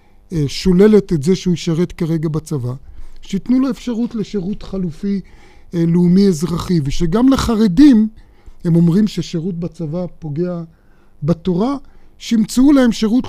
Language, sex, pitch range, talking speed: Hebrew, male, 155-200 Hz, 115 wpm